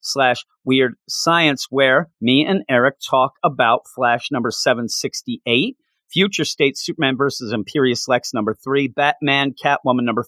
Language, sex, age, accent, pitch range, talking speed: English, male, 40-59, American, 115-145 Hz, 135 wpm